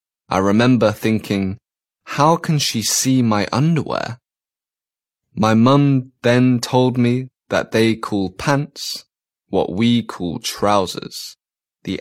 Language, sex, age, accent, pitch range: Chinese, male, 20-39, British, 100-125 Hz